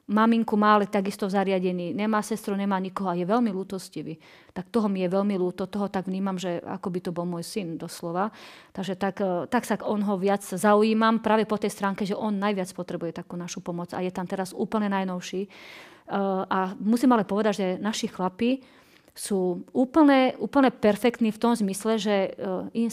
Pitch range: 185-210 Hz